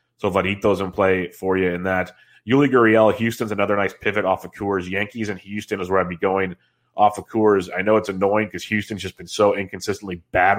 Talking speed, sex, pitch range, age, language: 220 wpm, male, 90-105 Hz, 30-49, English